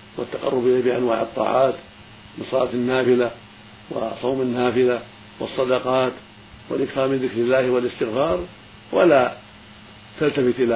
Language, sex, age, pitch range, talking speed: Arabic, male, 60-79, 105-130 Hz, 95 wpm